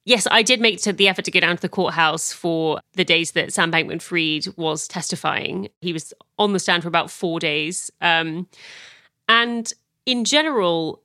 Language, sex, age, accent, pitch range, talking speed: English, female, 30-49, British, 160-195 Hz, 180 wpm